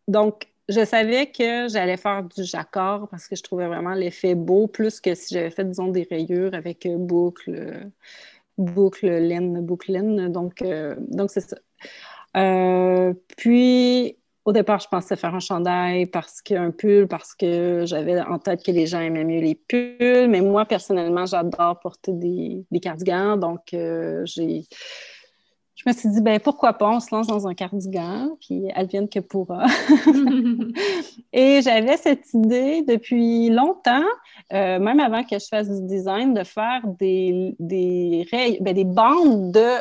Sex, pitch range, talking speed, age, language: female, 180-230 Hz, 165 wpm, 30-49, French